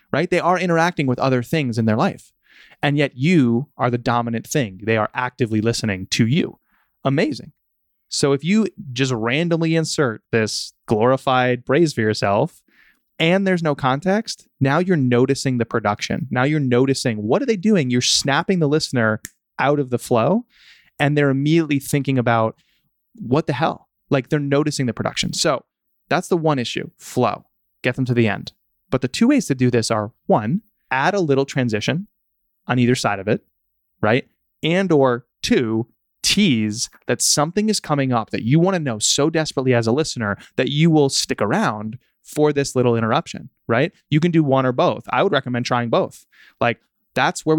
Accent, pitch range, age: American, 120-155 Hz, 20-39